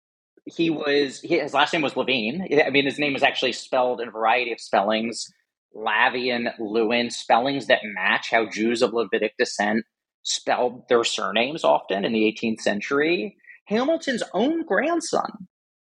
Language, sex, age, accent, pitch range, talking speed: English, male, 30-49, American, 145-220 Hz, 150 wpm